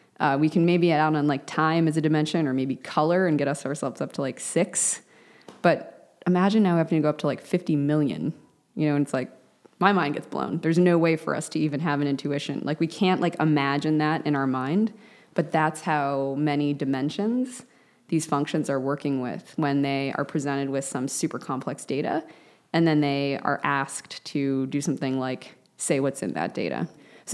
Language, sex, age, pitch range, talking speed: English, female, 20-39, 145-185 Hz, 210 wpm